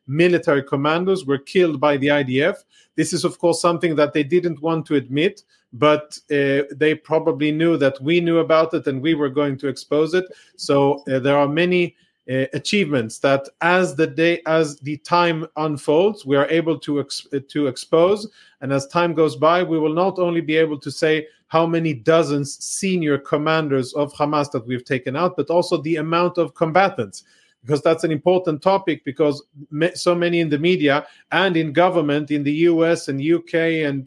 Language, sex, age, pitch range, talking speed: English, male, 40-59, 145-170 Hz, 190 wpm